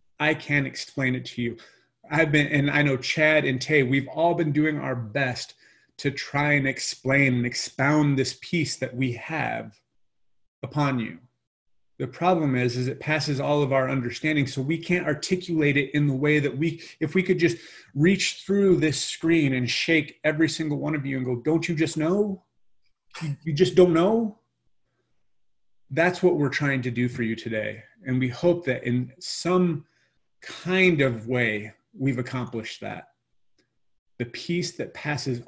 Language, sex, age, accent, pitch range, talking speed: English, male, 30-49, American, 125-155 Hz, 175 wpm